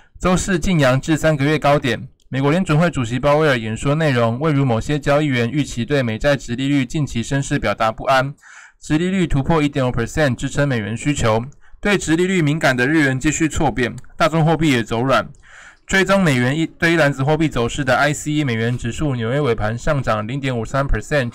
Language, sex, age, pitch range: Chinese, male, 20-39, 120-150 Hz